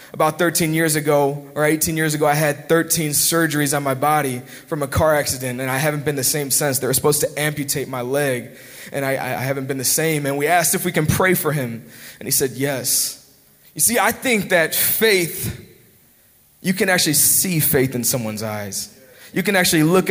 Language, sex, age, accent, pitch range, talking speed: English, male, 20-39, American, 145-185 Hz, 210 wpm